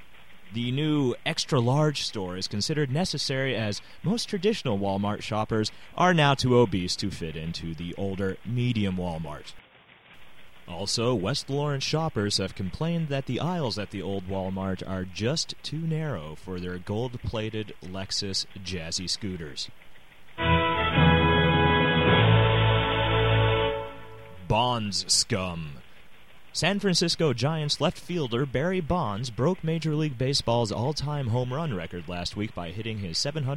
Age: 30-49